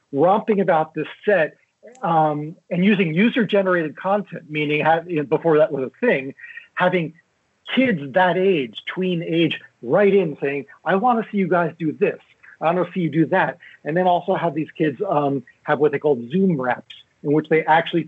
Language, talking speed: English, 195 wpm